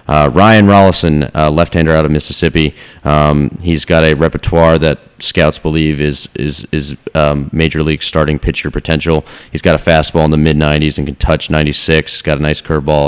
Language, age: English, 30-49